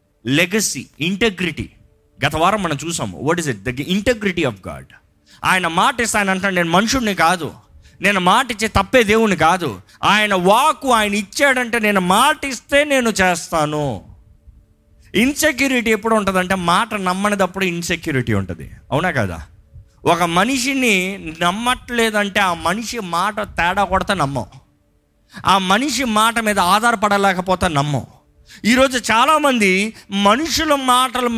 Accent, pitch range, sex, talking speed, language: native, 145-215 Hz, male, 140 wpm, Telugu